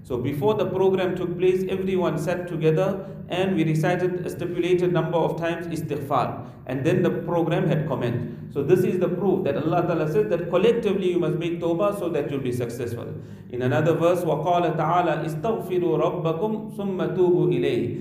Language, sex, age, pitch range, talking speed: English, male, 40-59, 155-185 Hz, 180 wpm